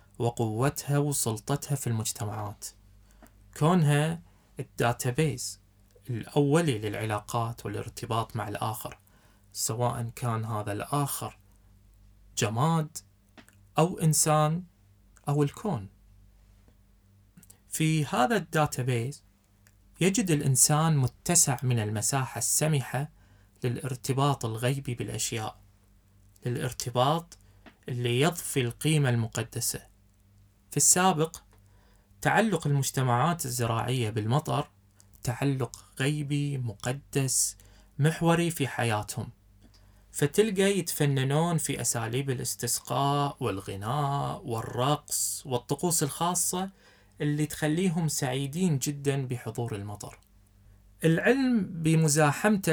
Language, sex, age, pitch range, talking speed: Arabic, male, 20-39, 100-145 Hz, 75 wpm